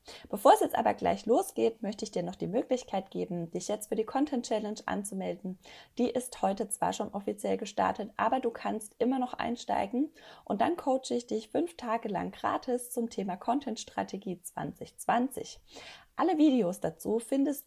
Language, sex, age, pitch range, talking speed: German, female, 20-39, 200-255 Hz, 175 wpm